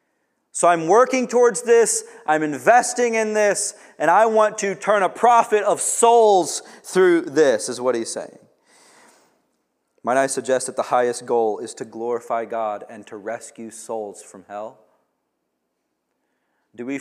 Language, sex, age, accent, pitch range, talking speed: English, male, 30-49, American, 115-155 Hz, 150 wpm